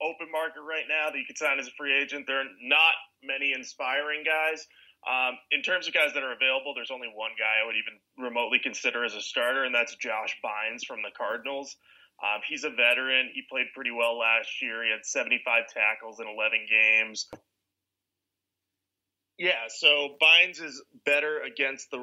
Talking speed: 190 wpm